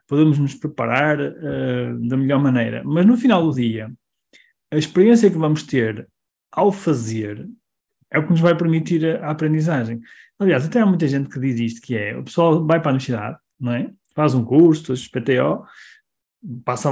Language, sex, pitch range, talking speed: Portuguese, male, 135-180 Hz, 185 wpm